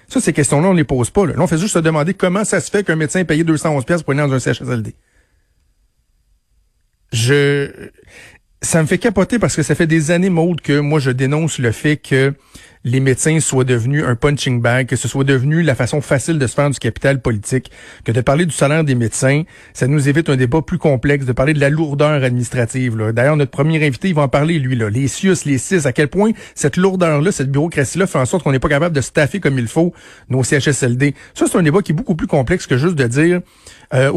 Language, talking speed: French, 240 wpm